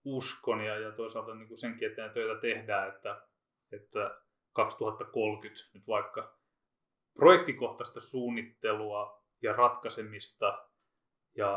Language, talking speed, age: Finnish, 100 wpm, 30-49